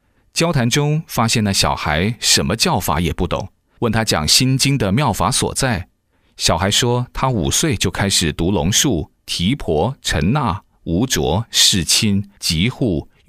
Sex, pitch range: male, 90-120 Hz